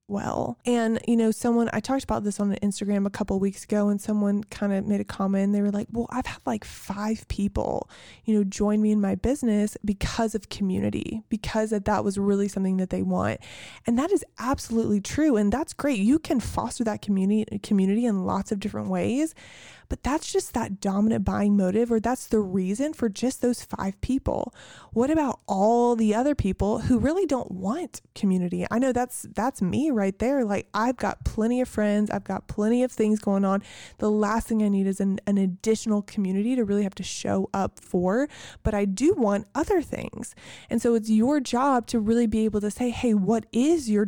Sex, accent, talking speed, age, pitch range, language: female, American, 210 wpm, 20-39, 200-235 Hz, English